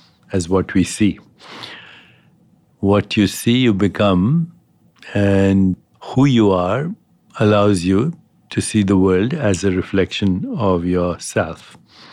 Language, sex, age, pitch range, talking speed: English, male, 60-79, 95-105 Hz, 120 wpm